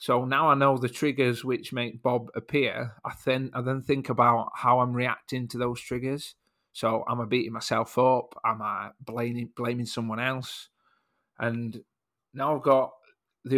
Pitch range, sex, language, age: 115-130 Hz, male, English, 40-59